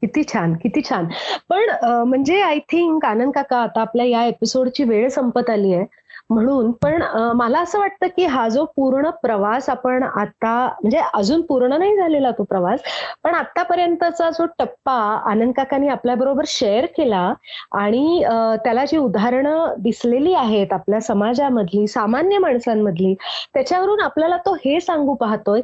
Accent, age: native, 30-49